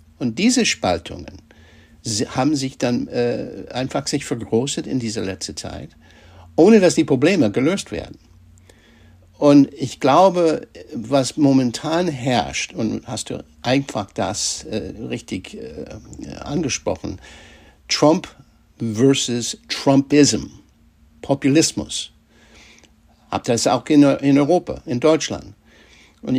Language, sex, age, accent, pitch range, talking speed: German, male, 60-79, German, 100-140 Hz, 110 wpm